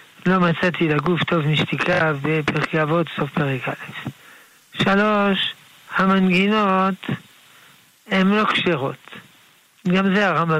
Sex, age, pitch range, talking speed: male, 60-79, 155-190 Hz, 110 wpm